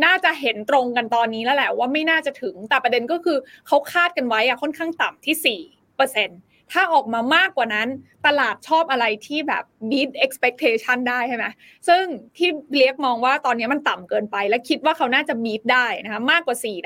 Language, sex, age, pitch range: Thai, female, 20-39, 240-315 Hz